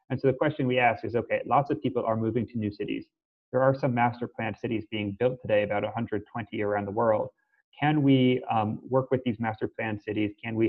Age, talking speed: 30-49, 230 wpm